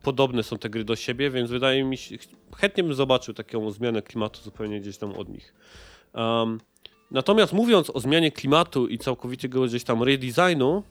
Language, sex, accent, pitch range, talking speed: Polish, male, native, 110-130 Hz, 175 wpm